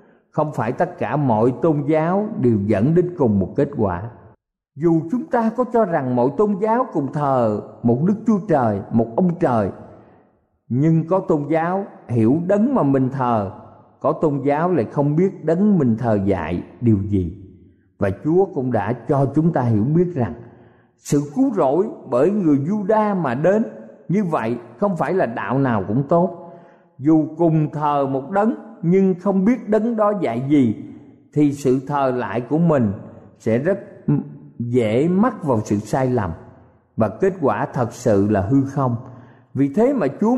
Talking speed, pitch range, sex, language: 175 wpm, 120-190 Hz, male, Vietnamese